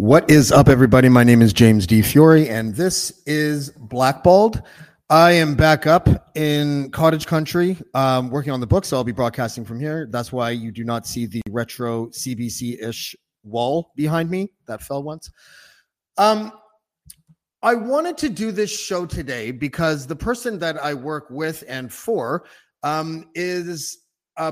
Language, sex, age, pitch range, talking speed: English, male, 30-49, 120-170 Hz, 165 wpm